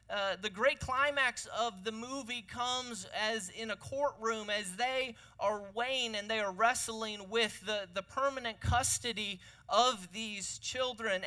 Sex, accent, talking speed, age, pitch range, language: male, American, 145 wpm, 30-49, 190-240 Hz, English